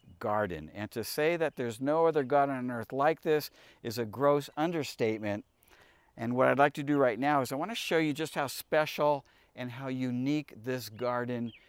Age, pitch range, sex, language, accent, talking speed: 50-69, 125-165 Hz, male, English, American, 200 wpm